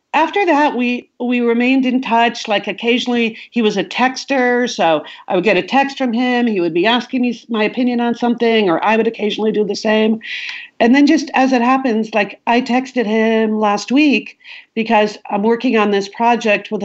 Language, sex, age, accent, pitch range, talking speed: English, female, 50-69, American, 195-245 Hz, 200 wpm